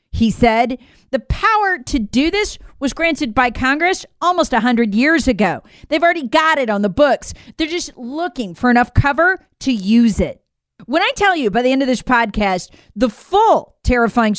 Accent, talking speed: American, 185 wpm